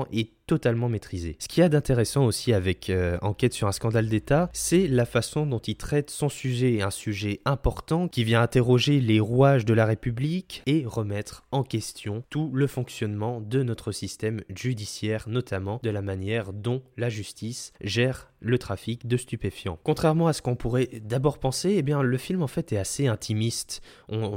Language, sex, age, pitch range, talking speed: French, male, 20-39, 105-135 Hz, 185 wpm